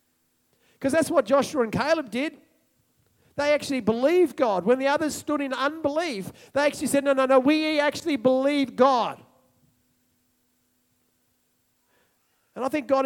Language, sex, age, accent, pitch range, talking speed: English, male, 40-59, Australian, 205-260 Hz, 140 wpm